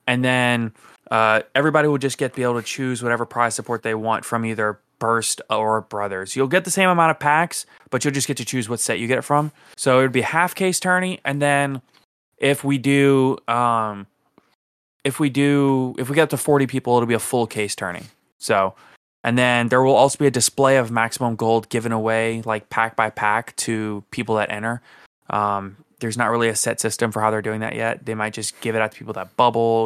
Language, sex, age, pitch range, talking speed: English, male, 20-39, 115-140 Hz, 235 wpm